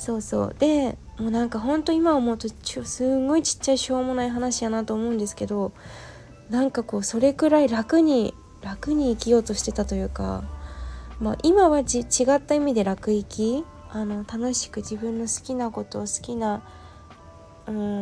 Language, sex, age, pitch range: Japanese, female, 20-39, 195-255 Hz